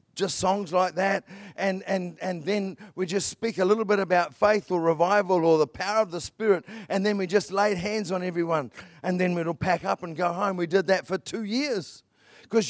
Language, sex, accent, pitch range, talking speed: English, male, Australian, 145-195 Hz, 220 wpm